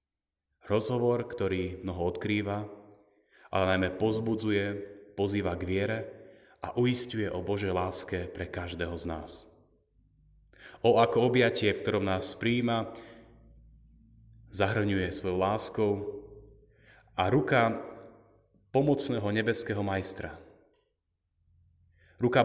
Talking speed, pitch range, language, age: 95 wpm, 95-115 Hz, Slovak, 30-49